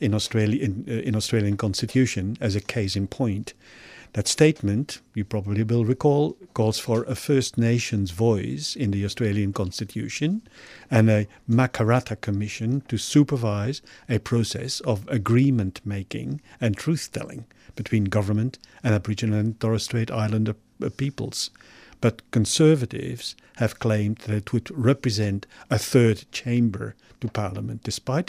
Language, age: English, 50-69